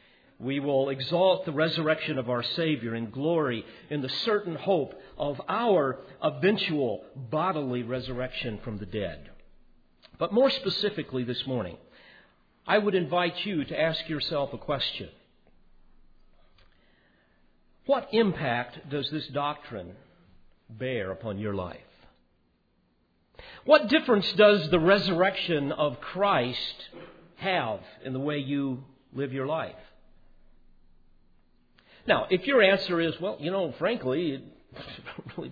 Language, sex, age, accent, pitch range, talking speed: English, male, 50-69, American, 120-170 Hz, 120 wpm